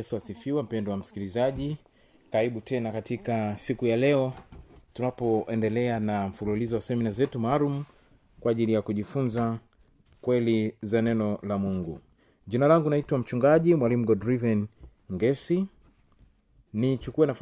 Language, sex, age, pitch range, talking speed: Swahili, male, 30-49, 110-150 Hz, 100 wpm